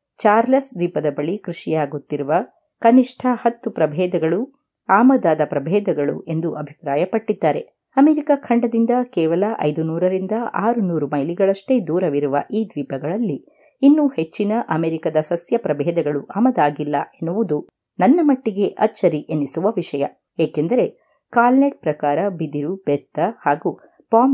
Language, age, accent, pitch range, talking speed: Kannada, 30-49, native, 155-230 Hz, 100 wpm